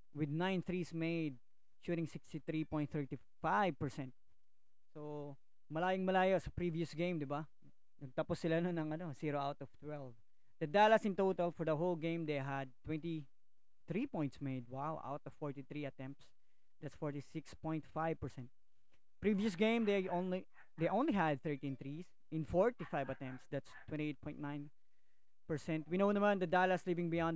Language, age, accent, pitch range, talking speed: Filipino, 20-39, native, 140-170 Hz, 140 wpm